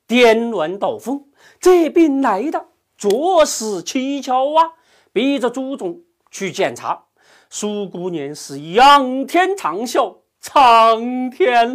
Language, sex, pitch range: Chinese, male, 215-300 Hz